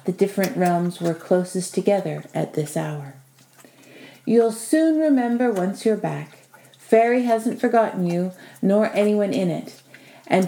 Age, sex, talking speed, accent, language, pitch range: 50-69, female, 135 wpm, American, English, 165-225 Hz